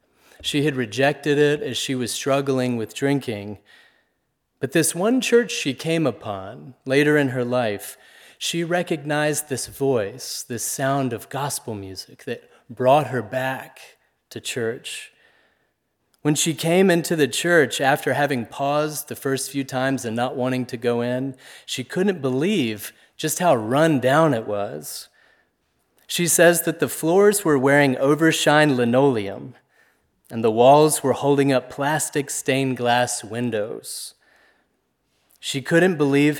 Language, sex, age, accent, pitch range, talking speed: English, male, 30-49, American, 120-150 Hz, 140 wpm